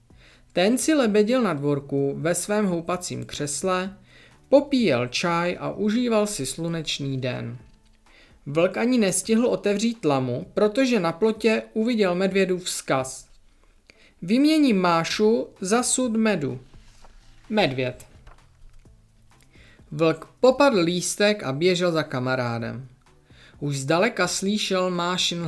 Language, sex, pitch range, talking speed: Czech, male, 140-210 Hz, 105 wpm